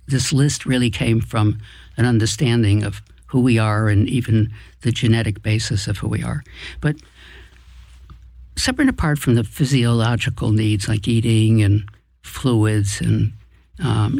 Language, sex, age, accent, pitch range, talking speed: English, male, 60-79, American, 110-135 Hz, 145 wpm